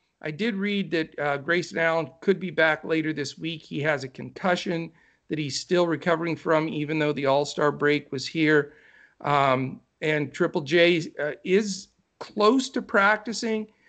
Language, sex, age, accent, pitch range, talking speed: English, male, 50-69, American, 145-175 Hz, 165 wpm